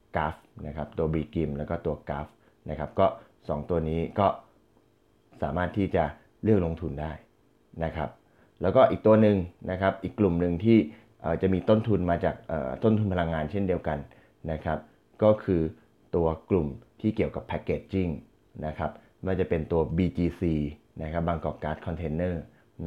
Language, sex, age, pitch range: Thai, male, 20-39, 80-95 Hz